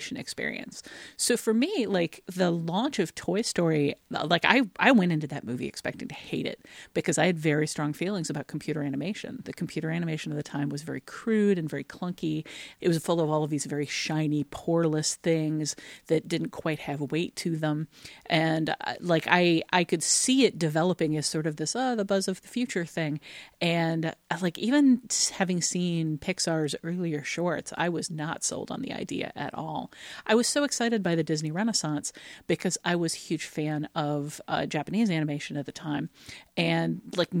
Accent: American